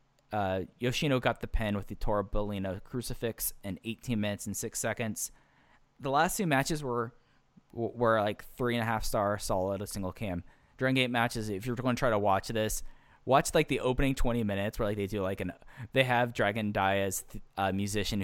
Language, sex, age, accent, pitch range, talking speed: English, male, 10-29, American, 95-115 Hz, 205 wpm